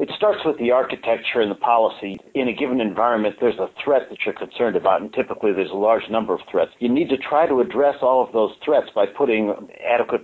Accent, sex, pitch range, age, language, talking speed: American, male, 110-135 Hz, 60-79, English, 235 wpm